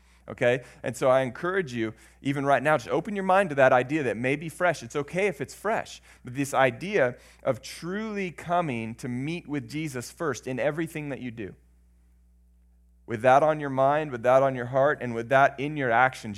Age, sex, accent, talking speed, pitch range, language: 30-49, male, American, 210 wpm, 95-130 Hz, English